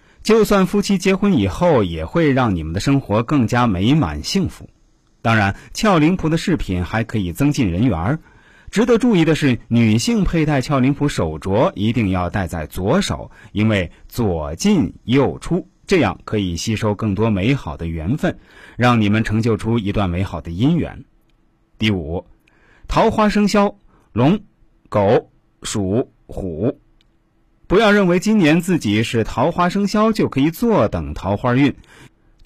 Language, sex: Chinese, male